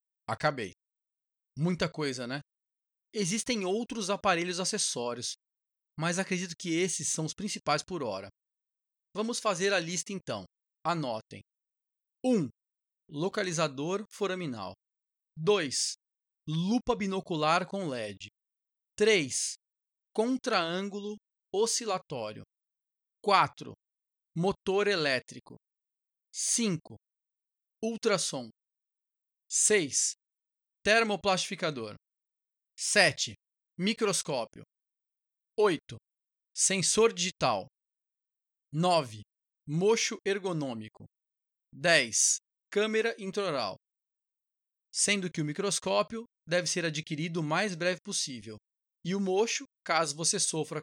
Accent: Brazilian